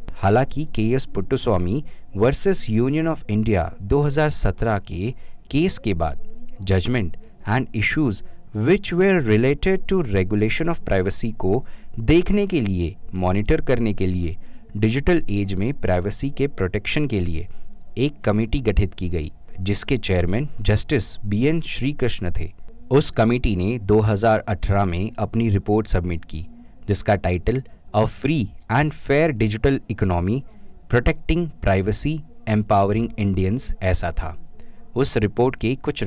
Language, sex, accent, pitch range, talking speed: Hindi, male, native, 95-135 Hz, 135 wpm